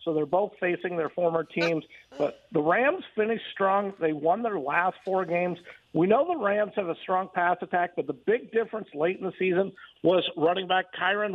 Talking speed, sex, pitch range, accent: 205 wpm, male, 170-200 Hz, American